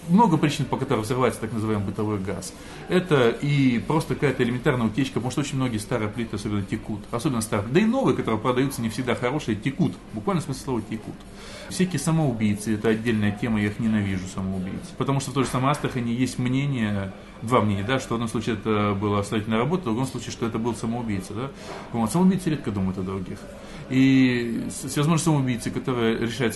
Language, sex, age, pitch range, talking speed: Russian, male, 20-39, 110-145 Hz, 190 wpm